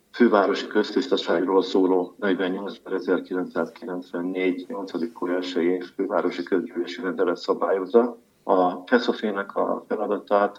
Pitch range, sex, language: 90-105 Hz, male, Hungarian